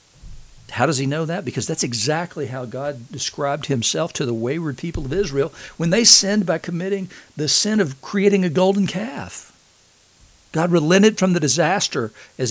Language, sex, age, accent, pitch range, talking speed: English, male, 60-79, American, 135-200 Hz, 175 wpm